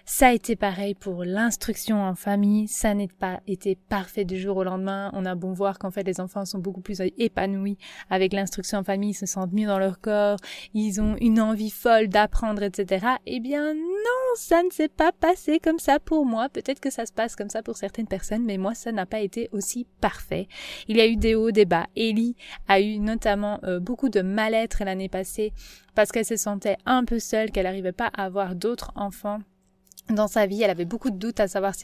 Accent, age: French, 20-39